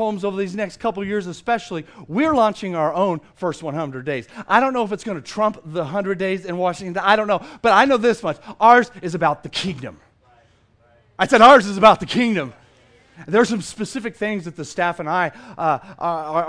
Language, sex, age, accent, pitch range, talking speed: English, male, 40-59, American, 145-210 Hz, 220 wpm